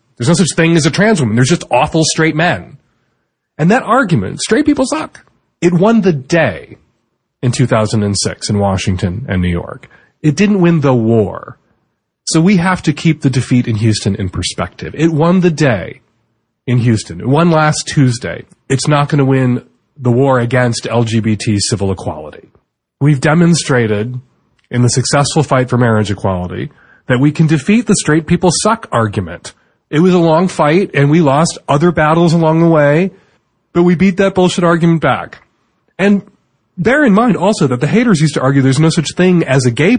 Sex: male